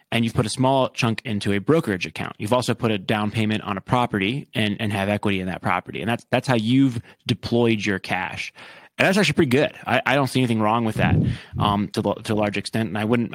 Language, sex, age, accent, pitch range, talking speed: English, male, 30-49, American, 105-125 Hz, 250 wpm